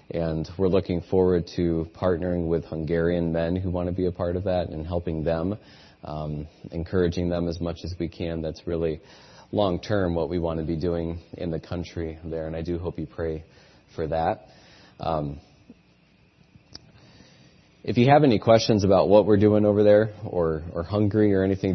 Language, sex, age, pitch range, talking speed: English, male, 30-49, 85-95 Hz, 180 wpm